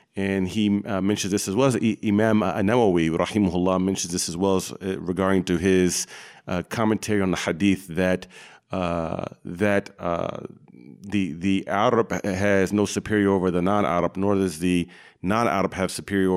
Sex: male